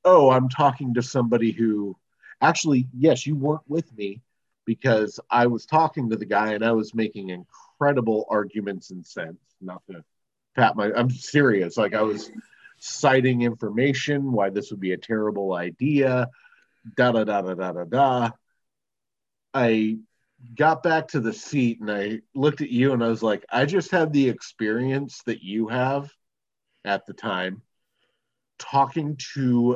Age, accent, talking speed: 40-59, American, 155 wpm